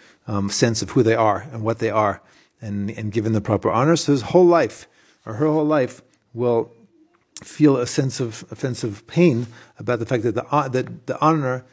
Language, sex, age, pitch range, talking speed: English, male, 40-59, 115-150 Hz, 215 wpm